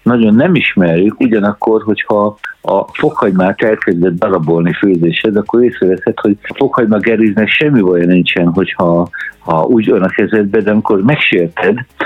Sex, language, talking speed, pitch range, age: male, Hungarian, 135 wpm, 90-110 Hz, 60-79